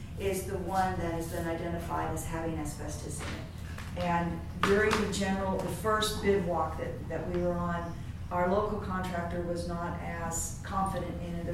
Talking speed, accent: 170 wpm, American